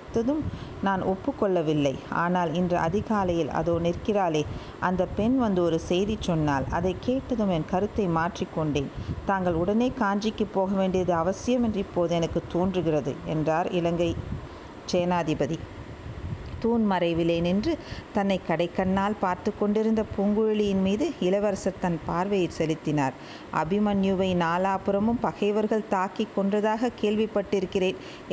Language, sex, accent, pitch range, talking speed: Tamil, female, native, 175-220 Hz, 105 wpm